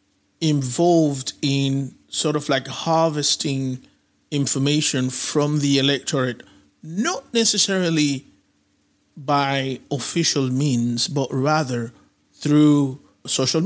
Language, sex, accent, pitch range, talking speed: English, male, Nigerian, 130-160 Hz, 85 wpm